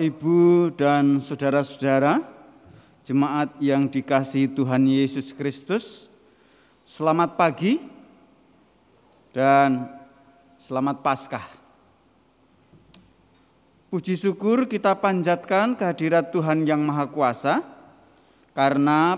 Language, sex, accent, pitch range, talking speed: Indonesian, male, native, 125-150 Hz, 75 wpm